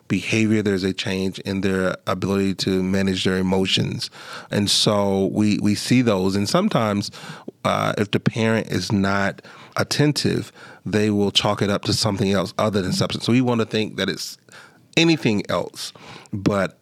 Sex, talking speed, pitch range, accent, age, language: male, 170 wpm, 95-105 Hz, American, 30-49, English